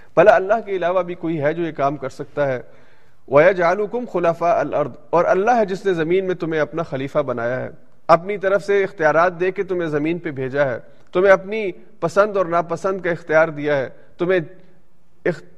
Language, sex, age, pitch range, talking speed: Urdu, male, 40-59, 155-195 Hz, 190 wpm